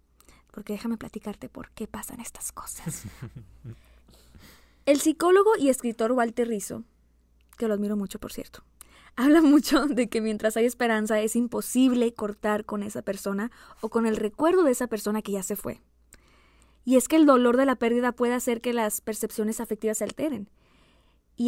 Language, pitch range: English, 210-250 Hz